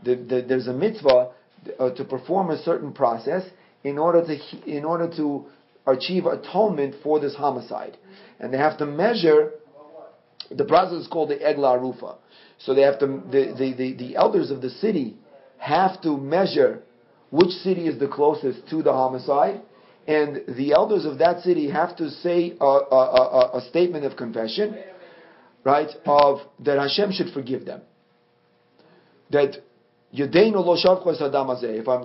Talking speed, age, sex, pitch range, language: 155 wpm, 40-59, male, 135-175 Hz, English